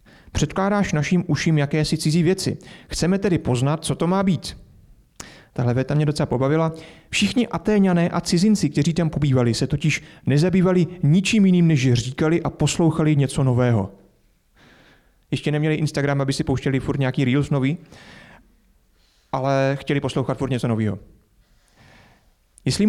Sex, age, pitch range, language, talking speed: male, 30-49, 125-165 Hz, Czech, 140 wpm